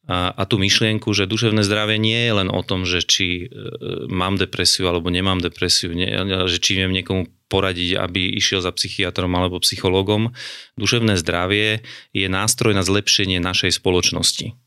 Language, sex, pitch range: Slovak, male, 90-110 Hz